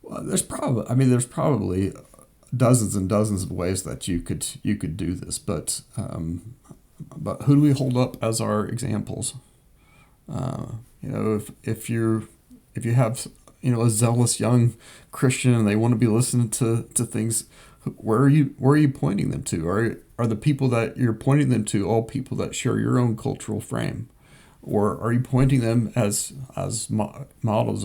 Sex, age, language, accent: male, 40-59, English, American